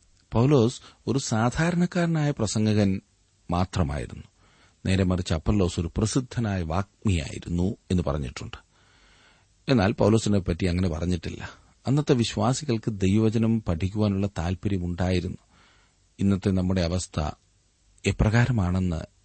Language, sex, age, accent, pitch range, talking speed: Malayalam, male, 40-59, native, 90-110 Hz, 80 wpm